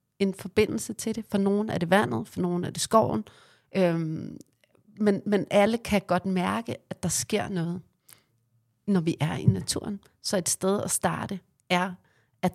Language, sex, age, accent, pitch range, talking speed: Danish, female, 30-49, native, 165-195 Hz, 175 wpm